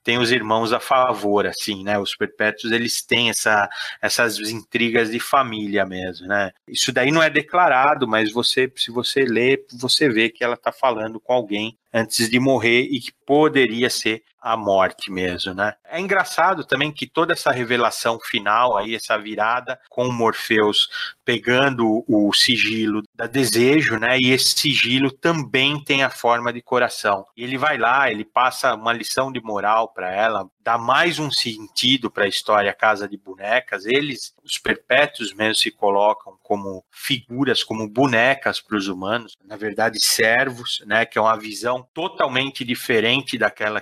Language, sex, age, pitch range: Portuguese, male, 30-49, 105-130 Hz